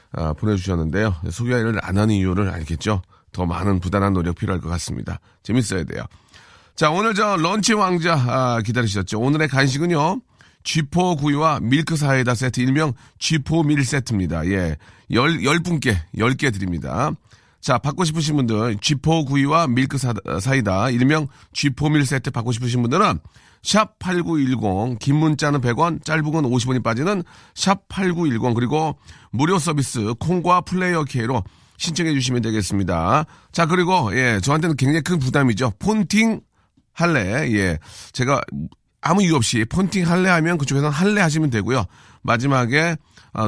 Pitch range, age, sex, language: 110-160 Hz, 40-59, male, Korean